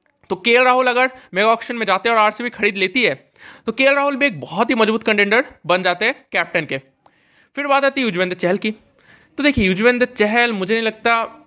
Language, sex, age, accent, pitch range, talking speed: Hindi, male, 20-39, native, 185-245 Hz, 210 wpm